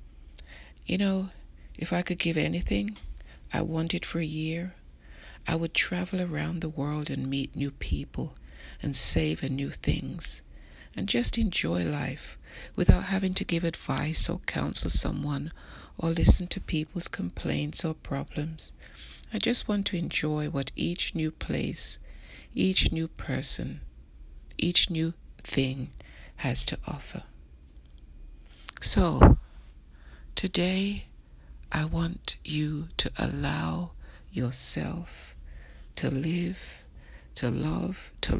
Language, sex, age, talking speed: English, female, 60-79, 120 wpm